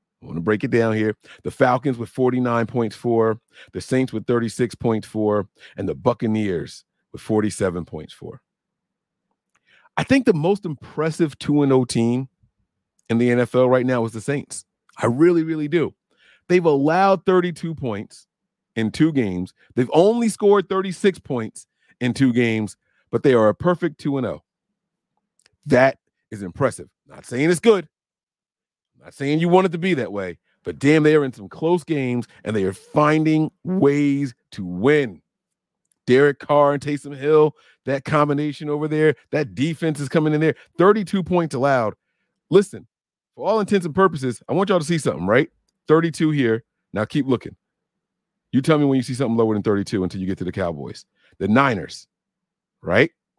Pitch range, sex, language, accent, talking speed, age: 115-160 Hz, male, English, American, 170 wpm, 40-59